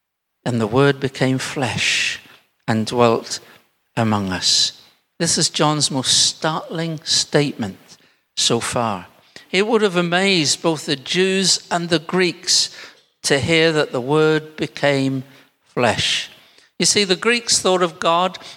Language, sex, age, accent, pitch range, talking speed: English, male, 60-79, British, 125-175 Hz, 135 wpm